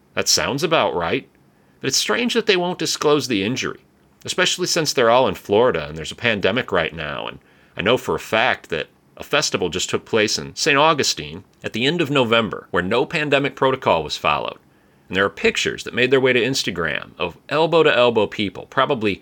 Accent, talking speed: American, 210 wpm